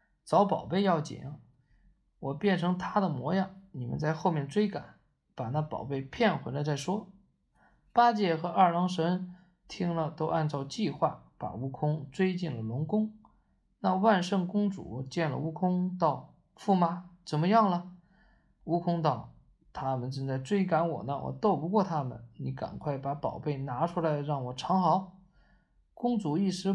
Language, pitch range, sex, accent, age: Chinese, 145-185 Hz, male, native, 20-39